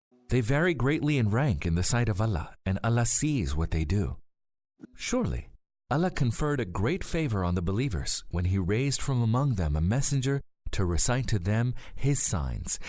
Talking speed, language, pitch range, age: 180 wpm, English, 95-135 Hz, 40-59